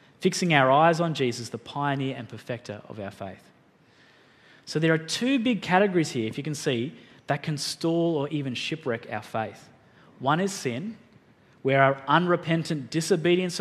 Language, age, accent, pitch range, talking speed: English, 20-39, Australian, 120-165 Hz, 170 wpm